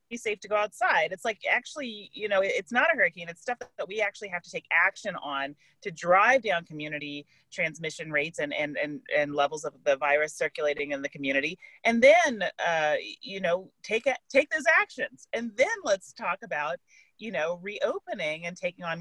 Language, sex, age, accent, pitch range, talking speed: English, female, 30-49, American, 170-275 Hz, 200 wpm